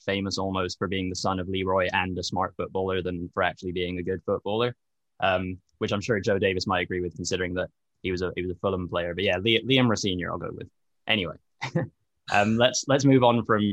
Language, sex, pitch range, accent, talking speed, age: English, male, 90-105 Hz, British, 230 wpm, 10-29